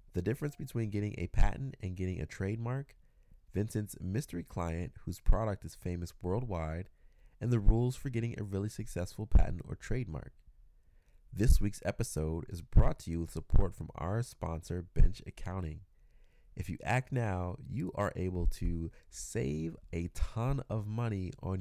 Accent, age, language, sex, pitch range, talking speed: American, 20-39, English, male, 85-105 Hz, 160 wpm